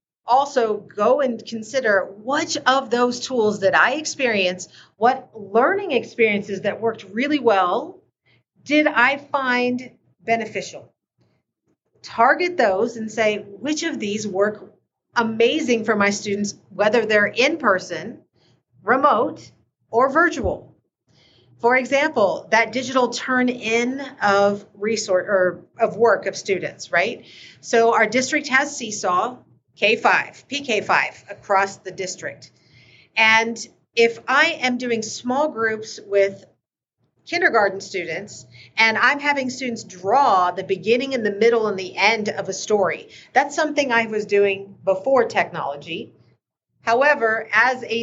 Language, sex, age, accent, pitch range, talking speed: English, female, 40-59, American, 205-255 Hz, 120 wpm